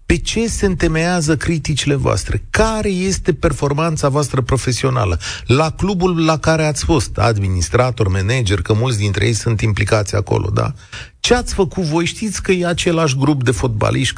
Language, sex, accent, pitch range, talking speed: Romanian, male, native, 100-135 Hz, 160 wpm